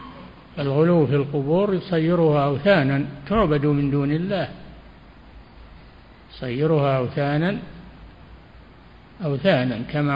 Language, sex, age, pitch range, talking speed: Arabic, male, 60-79, 135-160 Hz, 75 wpm